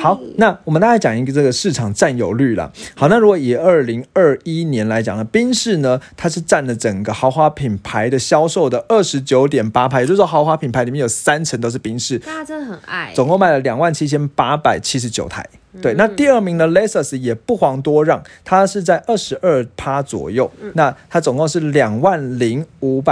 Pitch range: 125-170 Hz